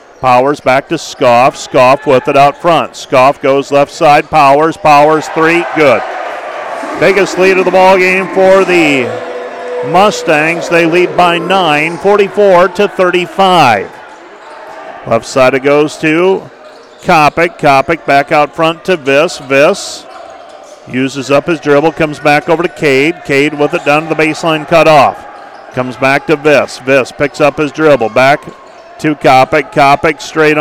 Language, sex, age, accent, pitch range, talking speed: English, male, 50-69, American, 145-165 Hz, 150 wpm